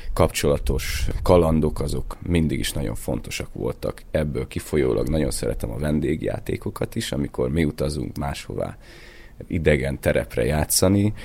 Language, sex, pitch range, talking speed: Hungarian, male, 75-85 Hz, 115 wpm